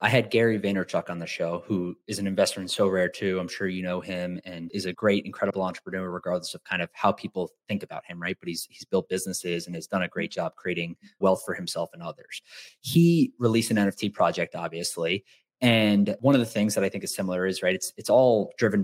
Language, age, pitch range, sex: English, 30-49, 90-115 Hz, male